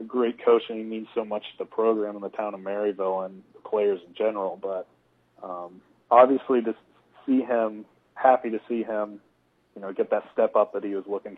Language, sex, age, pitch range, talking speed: English, male, 30-49, 100-115 Hz, 210 wpm